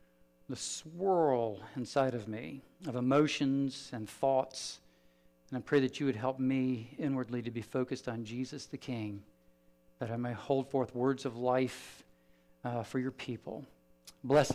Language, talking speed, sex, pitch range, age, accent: English, 155 wpm, male, 120-170 Hz, 50-69, American